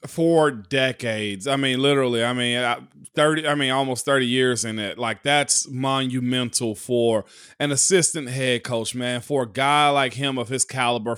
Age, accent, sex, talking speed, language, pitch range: 30-49, American, male, 170 wpm, English, 125-150 Hz